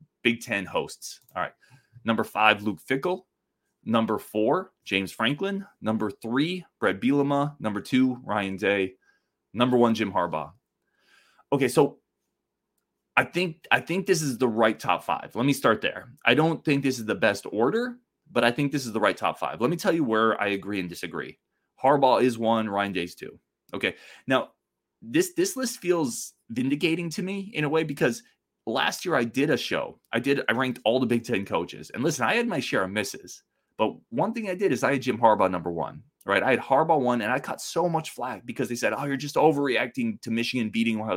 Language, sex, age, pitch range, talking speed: English, male, 20-39, 110-180 Hz, 210 wpm